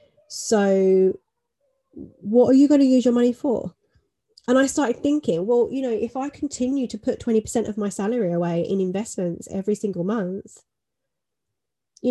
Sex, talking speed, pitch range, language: female, 165 wpm, 180-240 Hz, English